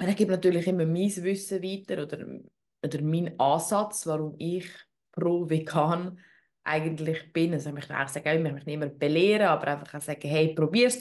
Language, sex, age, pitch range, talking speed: German, female, 20-39, 160-195 Hz, 180 wpm